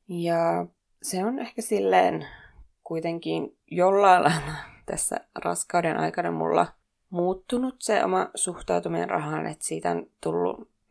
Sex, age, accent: female, 20-39, native